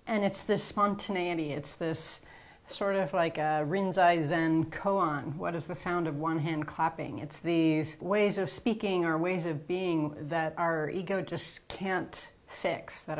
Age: 30-49